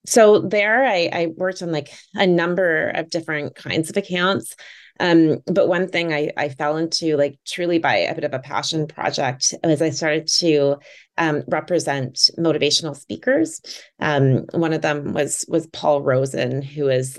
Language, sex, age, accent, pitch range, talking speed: English, female, 30-49, American, 140-175 Hz, 170 wpm